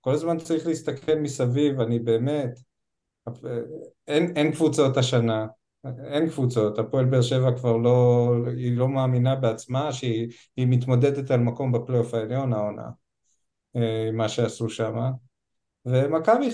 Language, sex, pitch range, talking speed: Hebrew, male, 120-140 Hz, 120 wpm